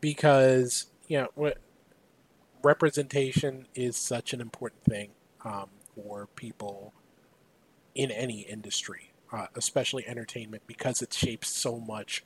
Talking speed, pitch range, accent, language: 115 wpm, 115-150 Hz, American, English